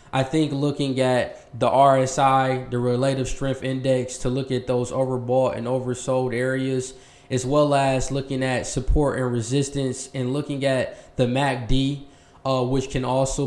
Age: 20-39